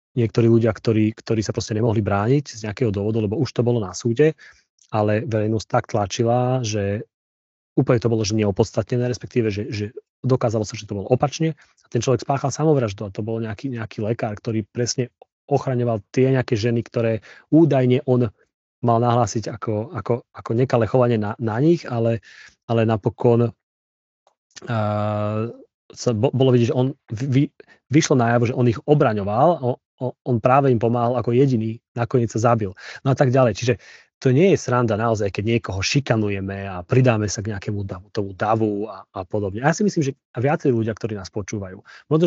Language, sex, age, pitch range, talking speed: Slovak, male, 30-49, 105-125 Hz, 185 wpm